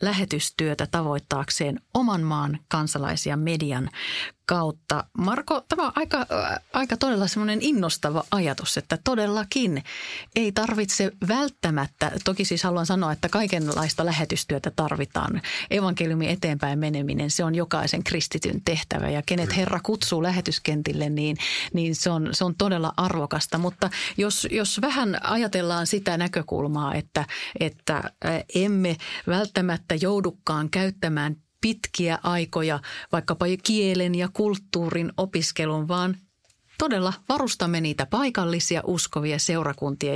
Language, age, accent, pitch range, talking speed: Finnish, 30-49, native, 155-200 Hz, 115 wpm